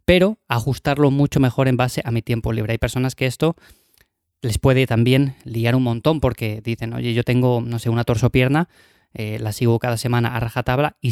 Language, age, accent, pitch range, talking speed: Spanish, 20-39, Spanish, 115-140 Hz, 200 wpm